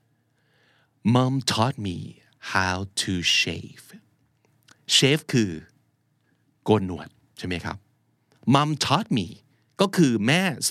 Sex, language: male, Thai